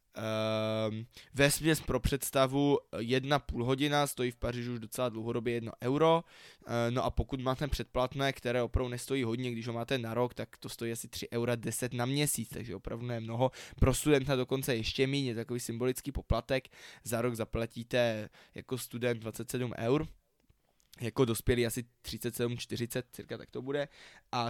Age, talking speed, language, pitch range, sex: 20-39, 160 wpm, Czech, 120-140 Hz, male